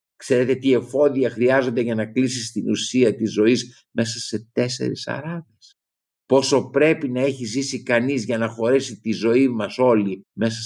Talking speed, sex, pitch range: 165 wpm, male, 85-130 Hz